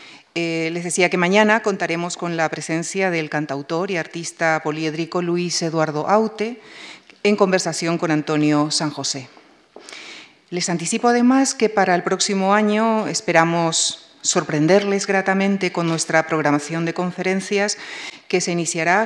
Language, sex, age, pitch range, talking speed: Spanish, female, 40-59, 165-200 Hz, 130 wpm